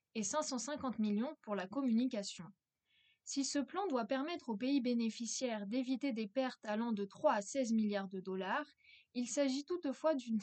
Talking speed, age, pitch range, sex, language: 165 wpm, 20-39, 215-270 Hz, female, French